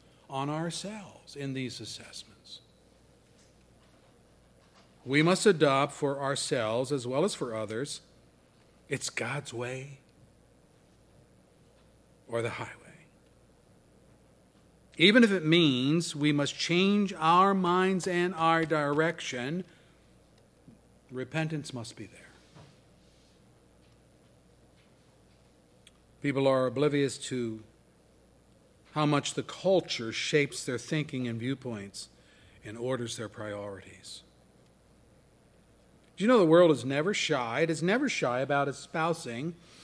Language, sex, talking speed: English, male, 100 wpm